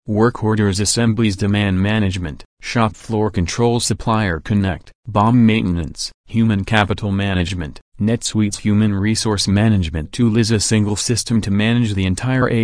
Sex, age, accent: male, 40-59, American